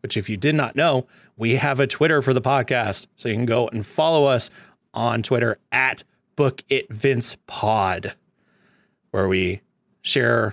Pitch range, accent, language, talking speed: 110-145 Hz, American, English, 155 wpm